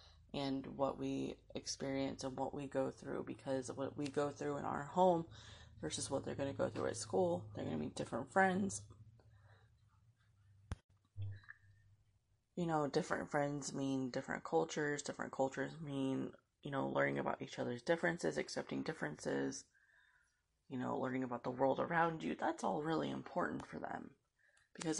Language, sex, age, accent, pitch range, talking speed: English, female, 20-39, American, 110-150 Hz, 155 wpm